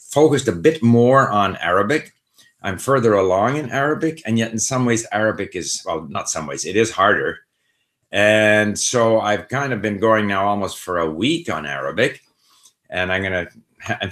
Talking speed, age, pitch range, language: 185 wpm, 50-69, 85-115 Hz, English